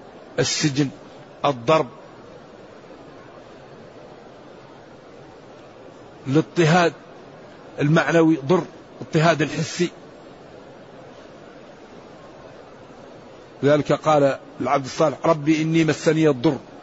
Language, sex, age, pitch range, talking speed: Arabic, male, 50-69, 150-185 Hz, 55 wpm